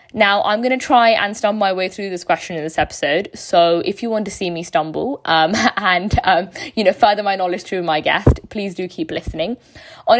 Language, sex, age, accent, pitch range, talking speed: English, female, 20-39, British, 180-220 Hz, 230 wpm